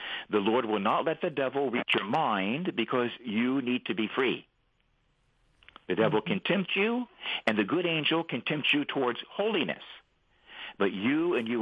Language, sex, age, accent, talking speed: English, male, 60-79, American, 175 wpm